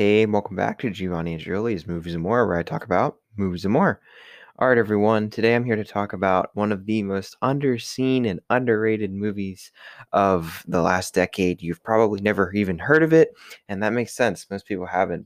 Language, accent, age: English, American, 20-39